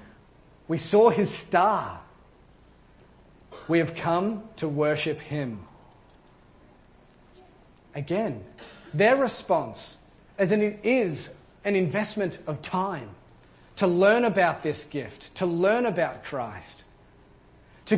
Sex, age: male, 40-59